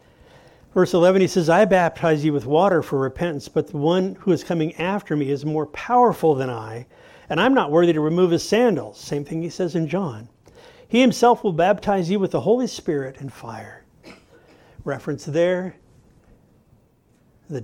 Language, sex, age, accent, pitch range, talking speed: English, male, 50-69, American, 145-190 Hz, 175 wpm